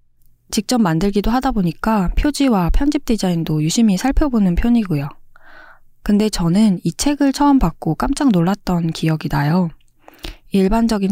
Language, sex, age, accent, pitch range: Korean, female, 20-39, native, 160-230 Hz